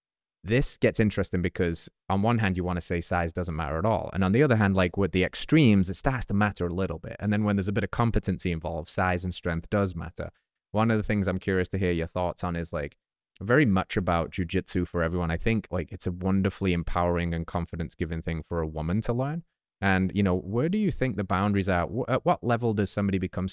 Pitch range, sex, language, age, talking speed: 85-100 Hz, male, English, 20-39, 245 wpm